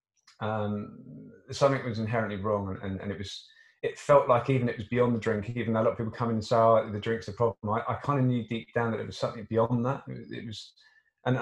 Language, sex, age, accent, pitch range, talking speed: English, male, 20-39, British, 105-125 Hz, 265 wpm